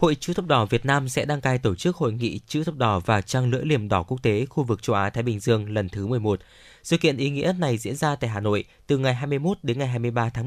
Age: 20-39